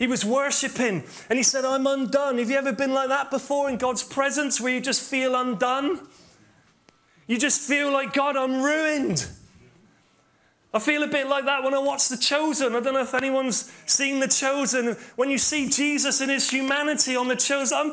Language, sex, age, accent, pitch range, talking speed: English, male, 30-49, British, 215-270 Hz, 200 wpm